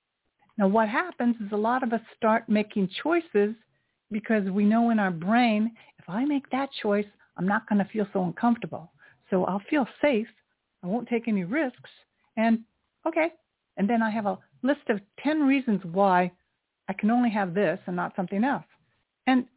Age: 60-79